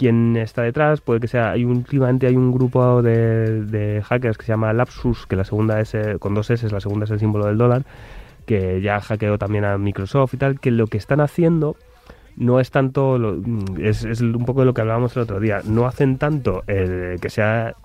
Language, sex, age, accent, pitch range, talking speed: Spanish, male, 20-39, Spanish, 100-125 Hz, 225 wpm